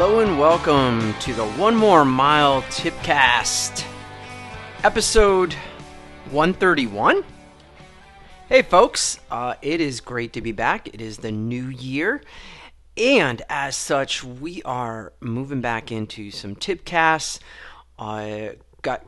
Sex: male